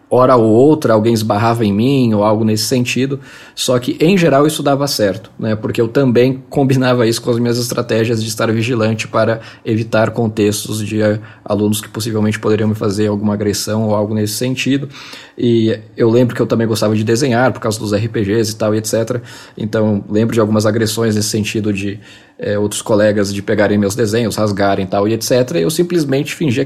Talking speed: 195 wpm